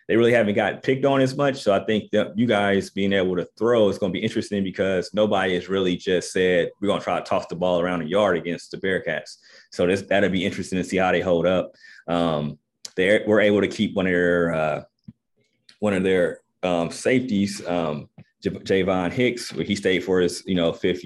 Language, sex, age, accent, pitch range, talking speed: English, male, 30-49, American, 85-105 Hz, 230 wpm